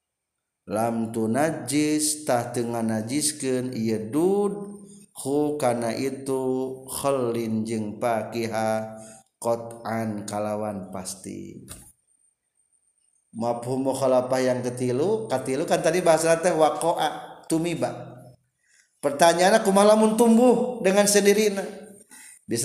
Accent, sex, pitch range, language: native, male, 115-150 Hz, Indonesian